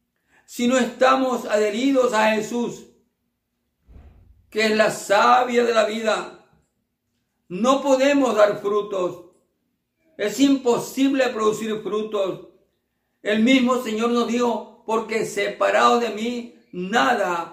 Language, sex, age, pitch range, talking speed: Spanish, male, 50-69, 190-240 Hz, 105 wpm